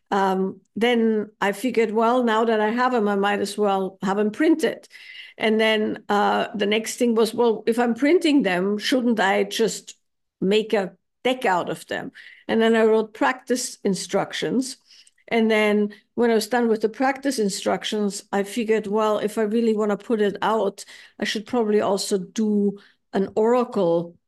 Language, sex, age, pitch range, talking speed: English, female, 50-69, 190-220 Hz, 180 wpm